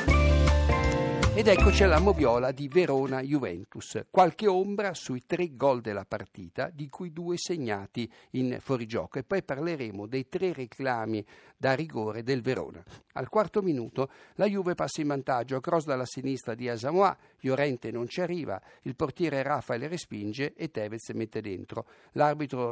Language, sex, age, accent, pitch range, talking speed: Italian, male, 60-79, native, 115-160 Hz, 145 wpm